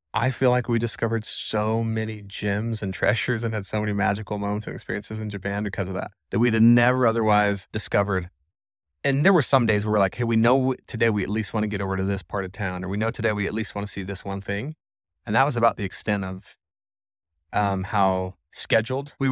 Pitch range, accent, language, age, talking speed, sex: 100-115 Hz, American, English, 20-39, 240 wpm, male